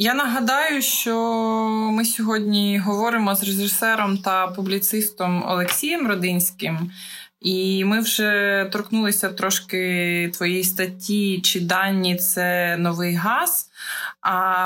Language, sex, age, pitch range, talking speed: Ukrainian, female, 20-39, 175-210 Hz, 105 wpm